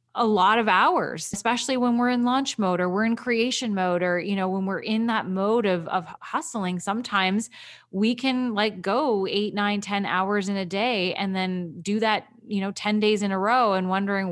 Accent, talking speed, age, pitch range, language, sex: American, 215 wpm, 20-39, 185-225 Hz, English, female